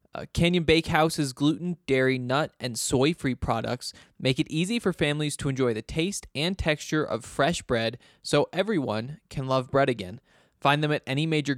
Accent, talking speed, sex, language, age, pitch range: American, 170 wpm, male, English, 20-39, 125-150 Hz